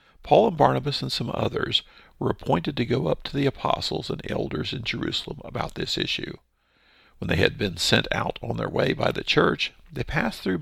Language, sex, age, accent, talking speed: English, male, 50-69, American, 205 wpm